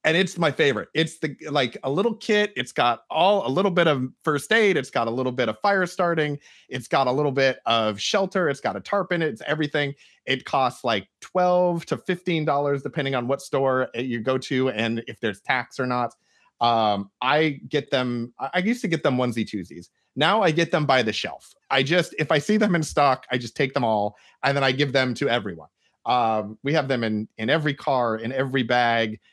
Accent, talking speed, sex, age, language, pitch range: American, 225 wpm, male, 30-49, English, 115-155 Hz